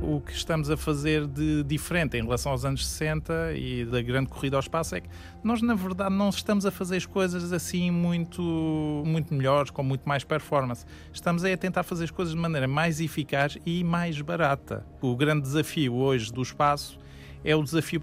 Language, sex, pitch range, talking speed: Portuguese, male, 125-165 Hz, 200 wpm